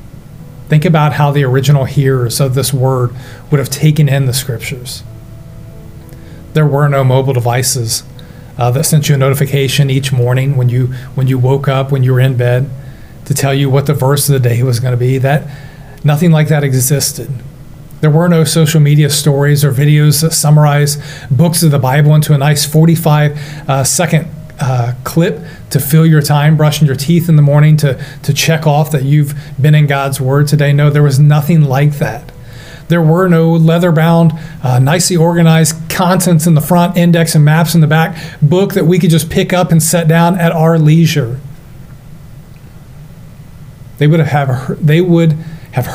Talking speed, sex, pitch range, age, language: 180 wpm, male, 135-155 Hz, 40-59, English